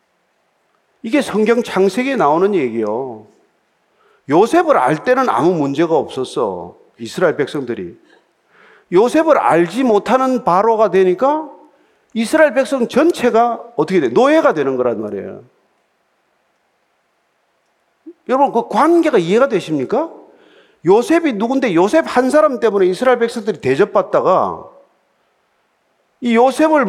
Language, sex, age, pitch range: Korean, male, 40-59, 185-285 Hz